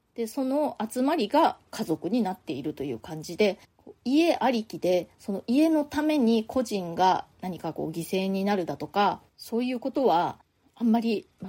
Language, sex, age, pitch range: Japanese, female, 20-39, 185-245 Hz